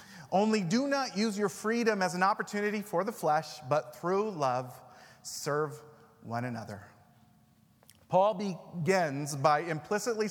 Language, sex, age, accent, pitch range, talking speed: English, male, 30-49, American, 140-195 Hz, 130 wpm